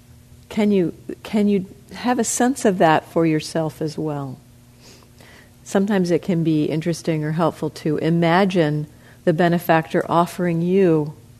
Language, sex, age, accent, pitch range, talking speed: English, female, 50-69, American, 120-175 Hz, 135 wpm